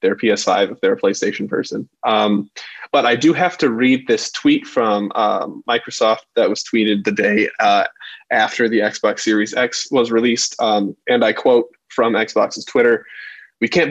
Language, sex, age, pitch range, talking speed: English, male, 20-39, 110-125 Hz, 175 wpm